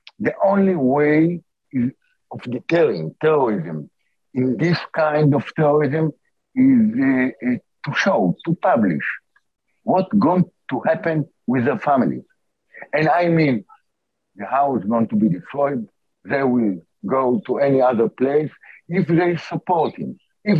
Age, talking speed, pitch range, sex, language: 60-79, 140 wpm, 135-190 Hz, male, English